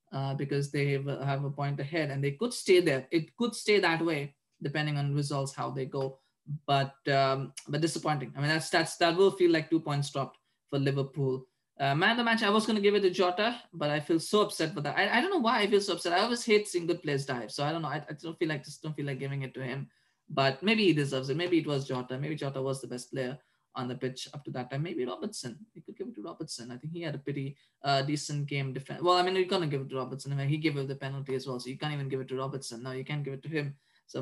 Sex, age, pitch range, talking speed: male, 20-39, 135-170 Hz, 295 wpm